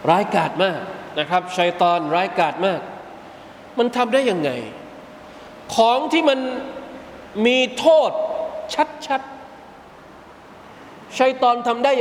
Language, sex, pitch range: Thai, male, 220-275 Hz